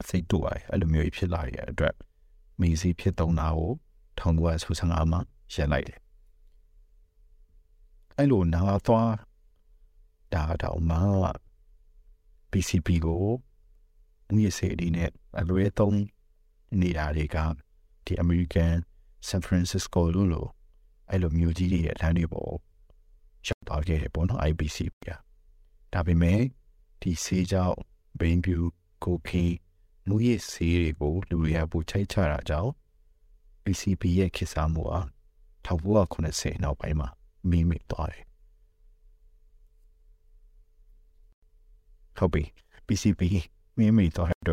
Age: 60-79